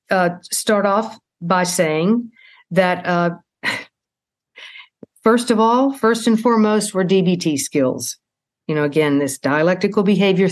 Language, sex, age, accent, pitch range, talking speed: English, female, 50-69, American, 170-215 Hz, 125 wpm